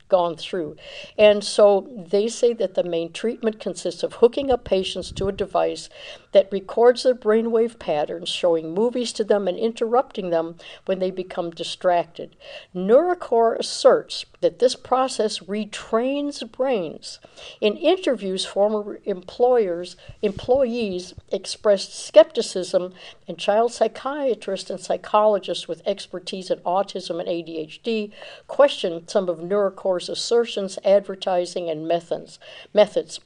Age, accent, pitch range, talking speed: 60-79, American, 180-235 Hz, 120 wpm